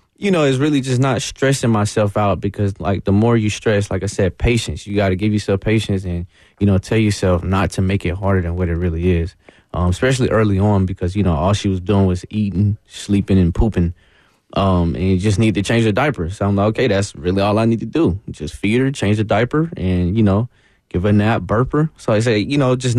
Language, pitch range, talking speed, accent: English, 95-110 Hz, 250 wpm, American